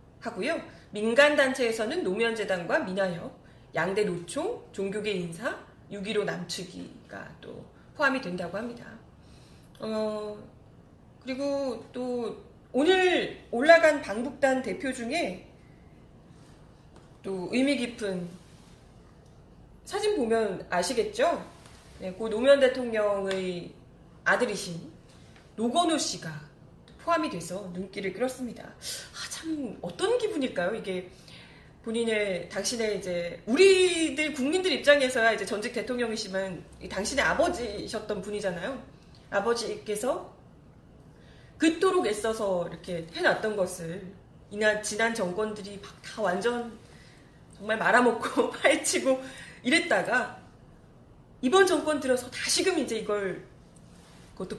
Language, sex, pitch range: Korean, female, 195-275 Hz